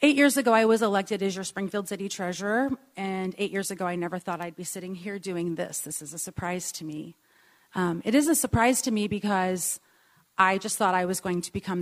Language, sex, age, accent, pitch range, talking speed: English, female, 30-49, American, 175-215 Hz, 235 wpm